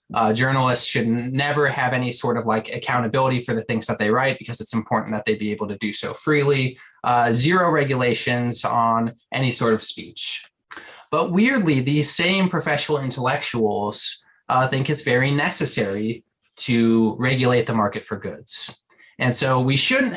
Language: English